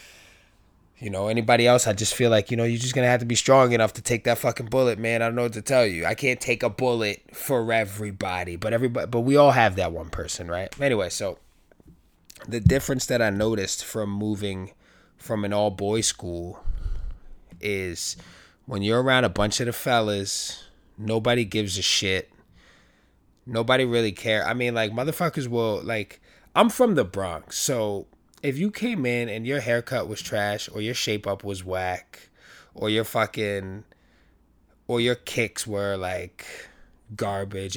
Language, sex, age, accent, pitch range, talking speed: English, male, 20-39, American, 95-120 Hz, 180 wpm